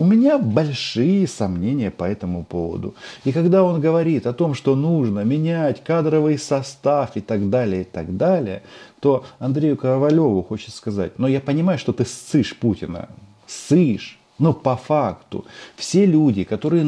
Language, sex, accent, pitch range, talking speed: Russian, male, native, 100-155 Hz, 155 wpm